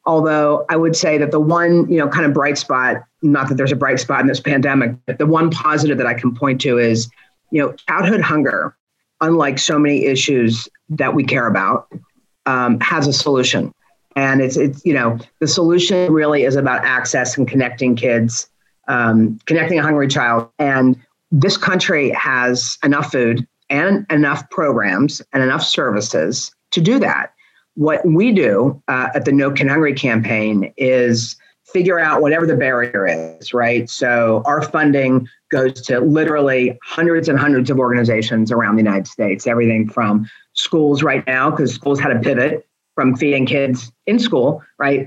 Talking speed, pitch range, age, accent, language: 175 wpm, 120-150 Hz, 40-59, American, English